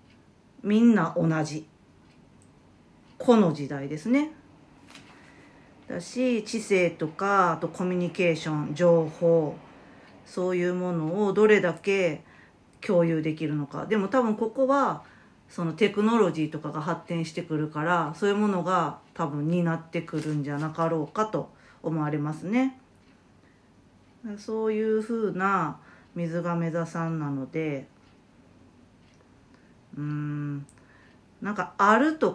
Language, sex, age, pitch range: Japanese, female, 40-59, 160-215 Hz